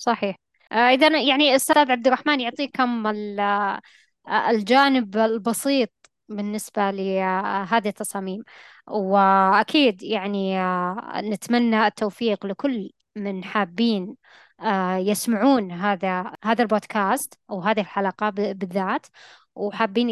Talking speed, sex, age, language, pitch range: 85 wpm, female, 20-39, Arabic, 200-235 Hz